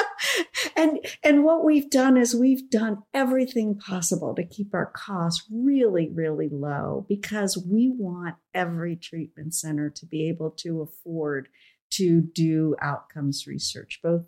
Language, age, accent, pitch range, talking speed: English, 50-69, American, 165-215 Hz, 140 wpm